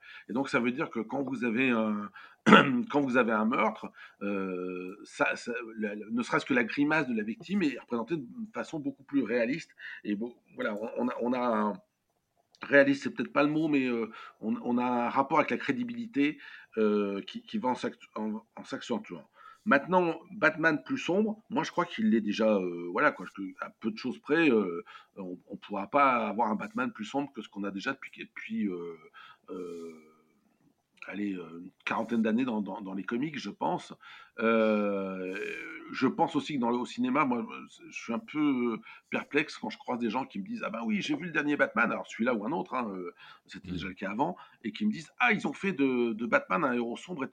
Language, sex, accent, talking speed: French, male, French, 215 wpm